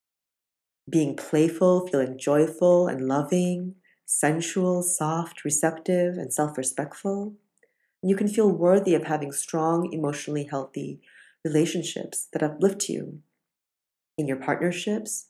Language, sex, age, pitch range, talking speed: English, female, 40-59, 145-175 Hz, 105 wpm